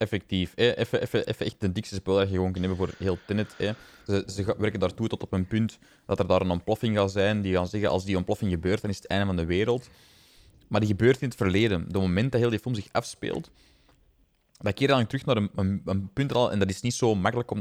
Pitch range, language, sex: 95-120 Hz, Dutch, male